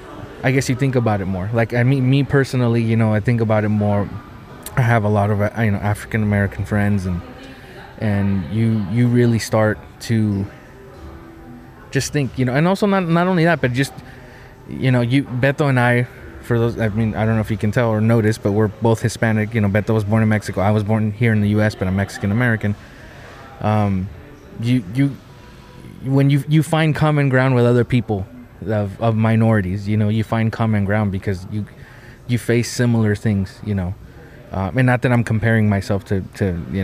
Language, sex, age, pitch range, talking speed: English, male, 20-39, 100-120 Hz, 205 wpm